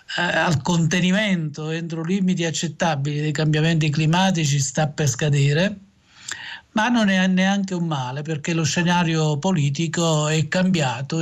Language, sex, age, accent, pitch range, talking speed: Italian, male, 50-69, native, 145-180 Hz, 125 wpm